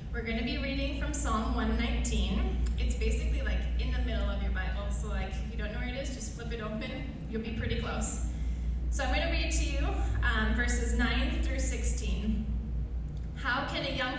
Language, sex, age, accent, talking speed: English, female, 20-39, American, 210 wpm